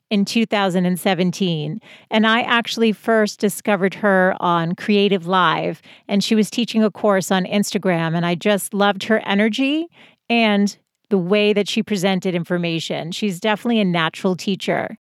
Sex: female